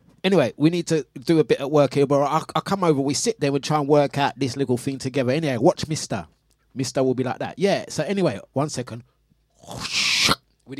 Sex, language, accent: male, English, British